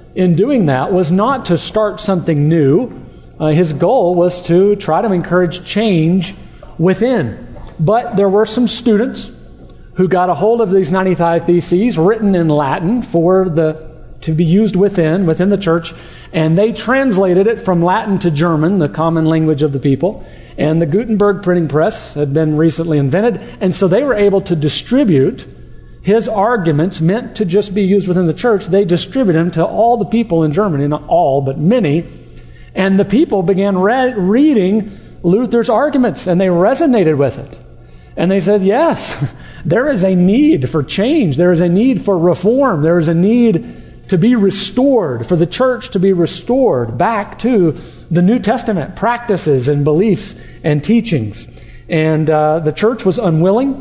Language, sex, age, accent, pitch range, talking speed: English, male, 50-69, American, 160-210 Hz, 170 wpm